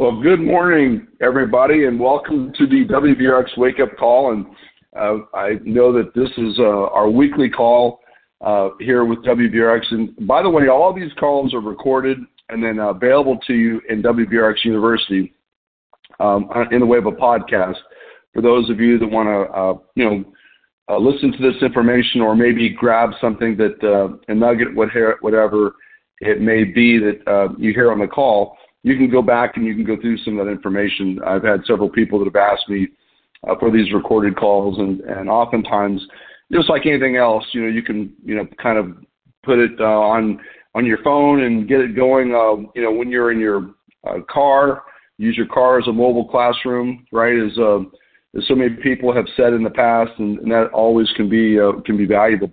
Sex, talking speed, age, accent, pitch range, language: male, 200 wpm, 50-69, American, 105-125 Hz, English